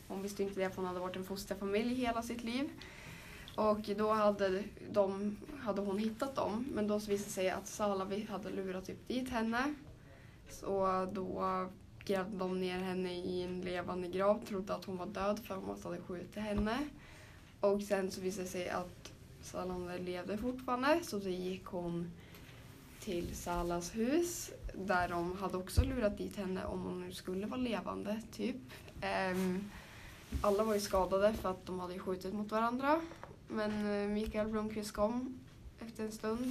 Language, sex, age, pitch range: Swedish, female, 20-39, 185-215 Hz